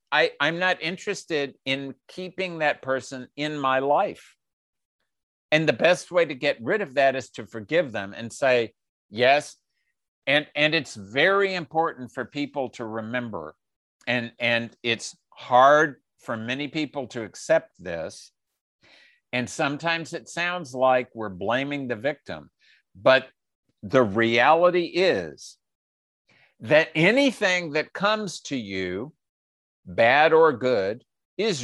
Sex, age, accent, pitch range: male, 50-69, American, 120-175 Hz